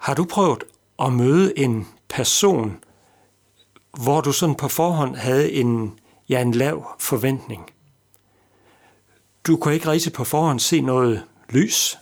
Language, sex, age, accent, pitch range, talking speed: Danish, male, 60-79, native, 110-155 Hz, 130 wpm